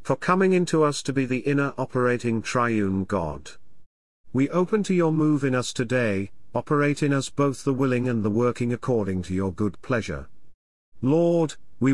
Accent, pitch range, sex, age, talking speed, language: British, 105-140 Hz, male, 40-59, 175 wpm, English